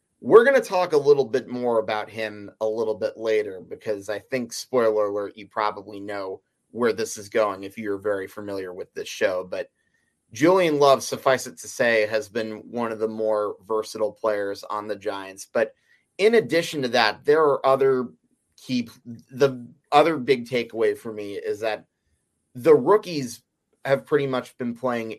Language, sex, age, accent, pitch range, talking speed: English, male, 30-49, American, 110-150 Hz, 180 wpm